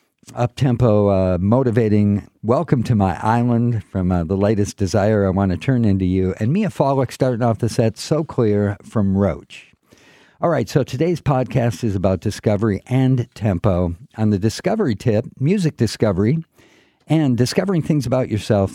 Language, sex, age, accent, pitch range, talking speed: English, male, 50-69, American, 100-125 Hz, 160 wpm